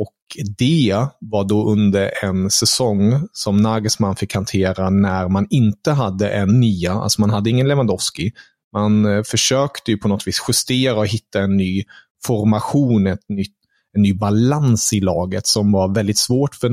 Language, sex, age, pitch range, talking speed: Swedish, male, 30-49, 105-125 Hz, 165 wpm